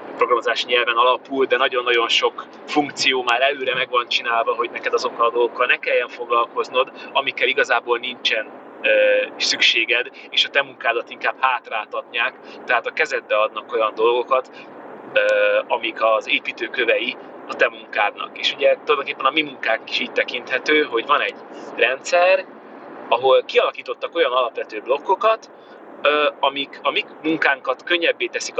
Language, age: Hungarian, 30-49